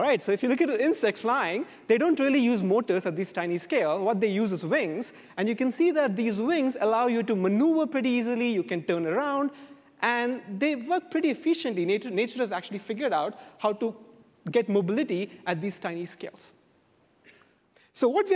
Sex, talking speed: male, 200 wpm